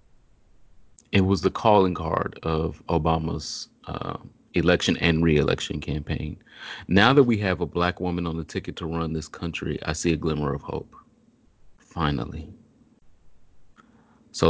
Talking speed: 140 wpm